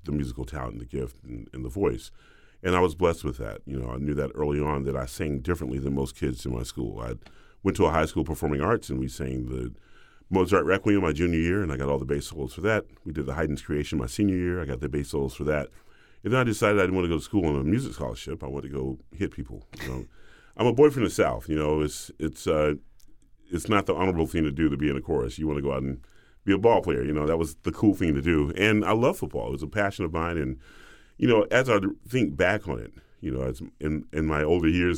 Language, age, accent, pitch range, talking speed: English, 40-59, American, 70-85 Hz, 285 wpm